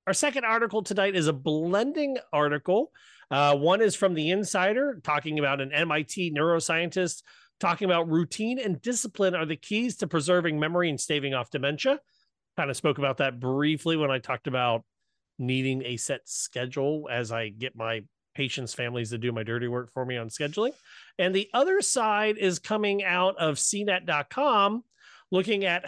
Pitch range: 135-185 Hz